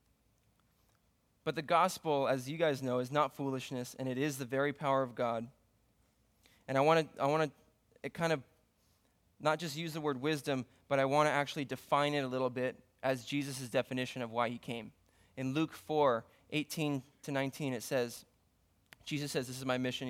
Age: 20-39